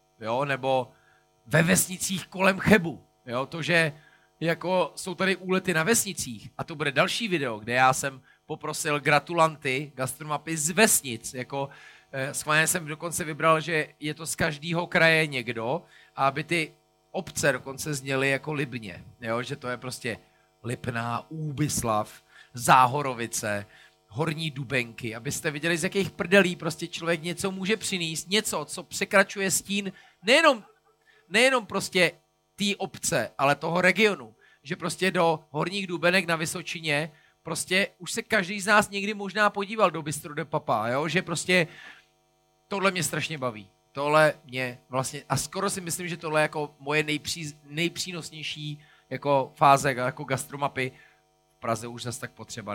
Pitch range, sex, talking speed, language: 135-185 Hz, male, 150 wpm, Czech